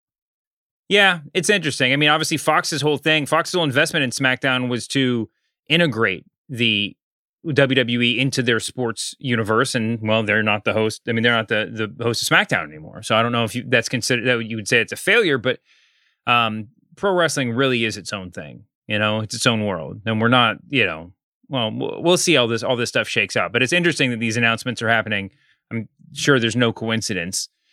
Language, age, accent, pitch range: English, 30-49, American, 110-140 Hz